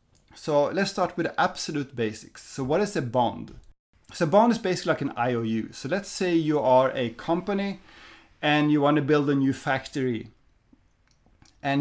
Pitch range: 125-160 Hz